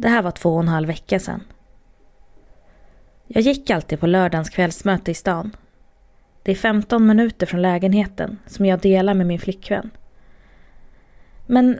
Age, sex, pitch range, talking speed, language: 20-39, female, 180-210 Hz, 155 wpm, Swedish